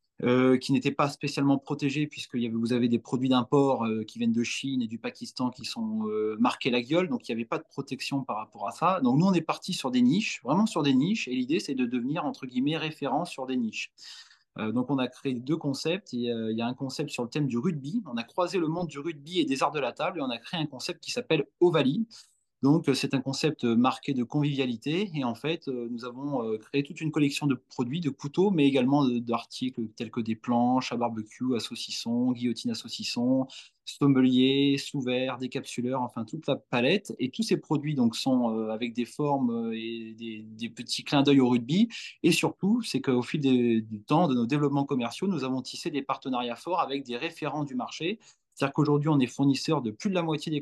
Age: 20-39